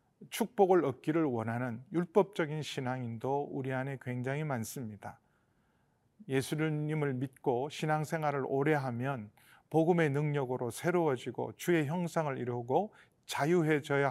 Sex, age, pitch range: male, 40-59, 125-175 Hz